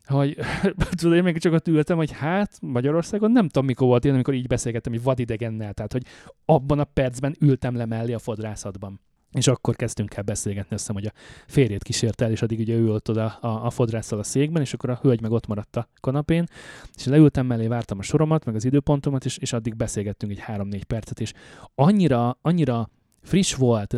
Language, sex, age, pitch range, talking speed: Hungarian, male, 20-39, 105-135 Hz, 205 wpm